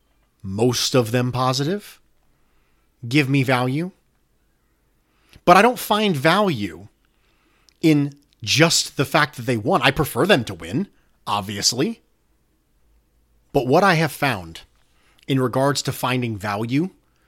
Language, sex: English, male